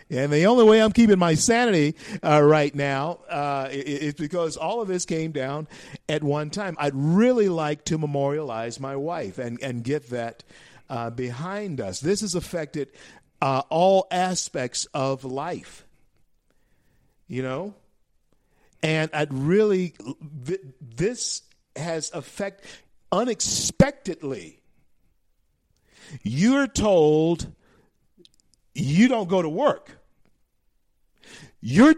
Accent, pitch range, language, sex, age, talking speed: American, 140-215 Hz, English, male, 50-69, 115 wpm